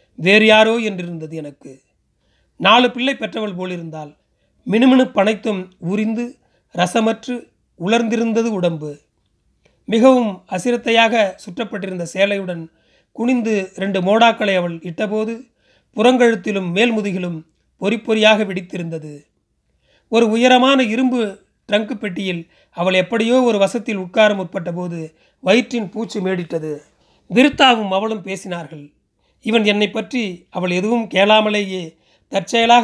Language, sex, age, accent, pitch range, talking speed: Tamil, male, 30-49, native, 180-230 Hz, 95 wpm